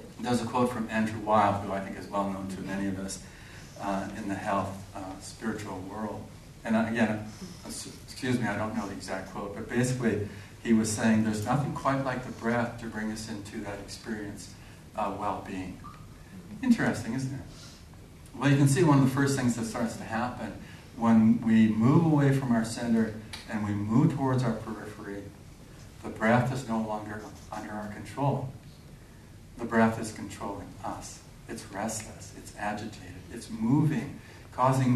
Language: English